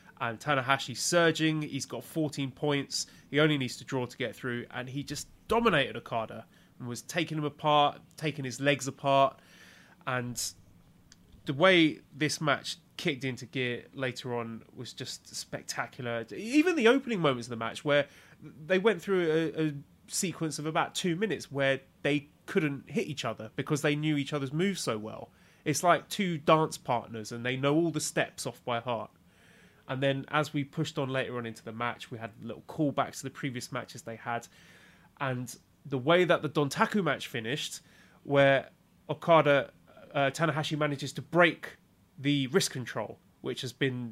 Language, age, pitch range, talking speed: English, 30-49, 120-155 Hz, 175 wpm